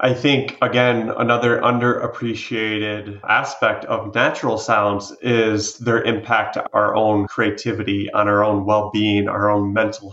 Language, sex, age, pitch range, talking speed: English, male, 30-49, 100-115 Hz, 135 wpm